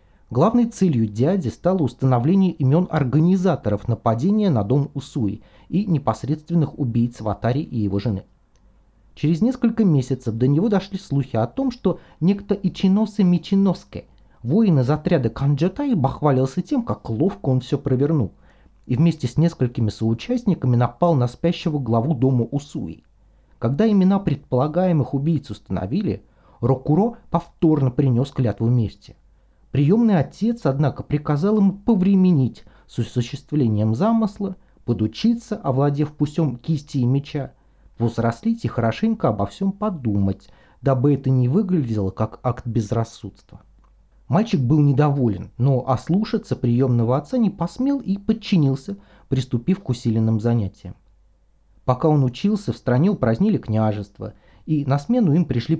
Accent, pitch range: native, 120-180 Hz